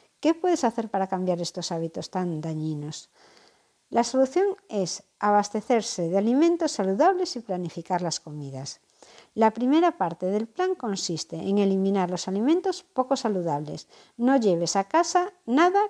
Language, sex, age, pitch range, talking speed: Spanish, female, 60-79, 185-270 Hz, 140 wpm